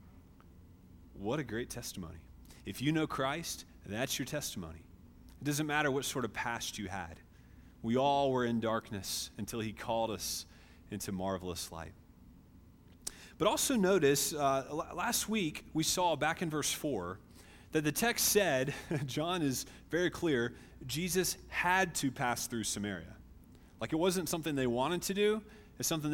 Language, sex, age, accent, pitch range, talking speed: English, male, 30-49, American, 95-155 Hz, 155 wpm